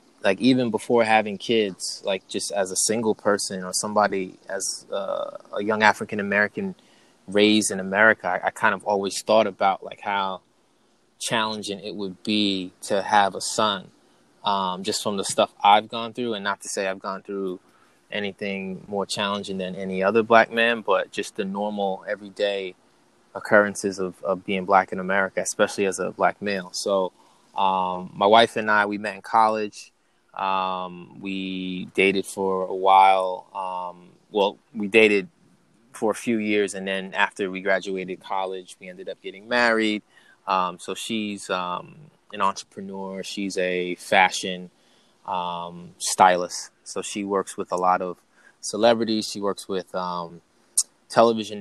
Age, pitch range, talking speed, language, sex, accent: 20-39, 95-105 Hz, 160 wpm, English, male, American